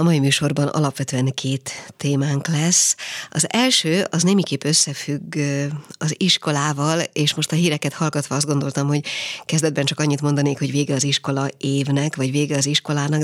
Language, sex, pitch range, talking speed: Hungarian, female, 140-160 Hz, 160 wpm